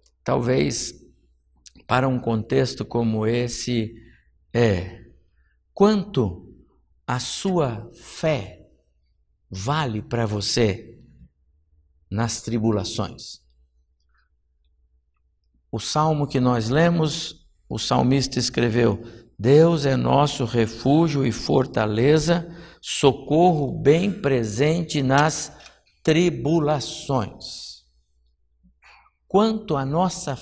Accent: Brazilian